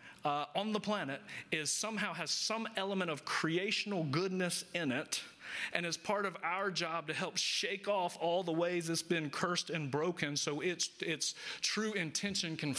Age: 40-59